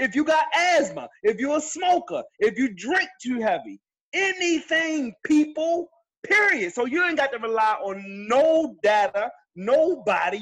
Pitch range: 220-315 Hz